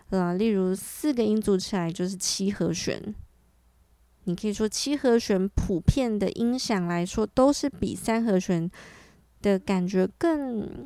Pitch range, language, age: 185-230 Hz, Chinese, 20-39